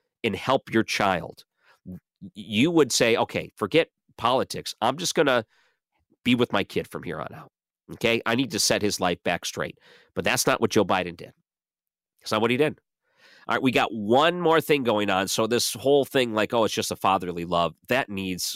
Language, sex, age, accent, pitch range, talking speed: English, male, 40-59, American, 85-125 Hz, 210 wpm